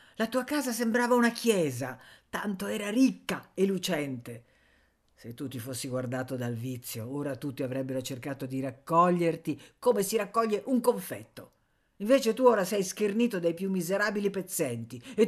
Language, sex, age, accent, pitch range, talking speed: Italian, female, 50-69, native, 130-205 Hz, 155 wpm